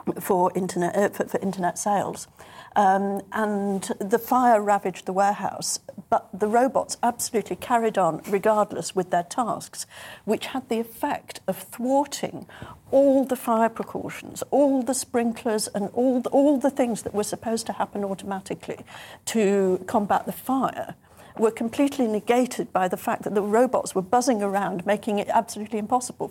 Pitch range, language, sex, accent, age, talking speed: 195-240 Hz, English, female, British, 50-69, 155 wpm